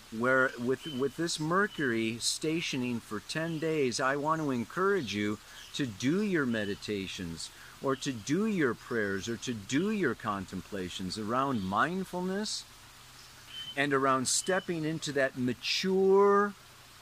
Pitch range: 120-155 Hz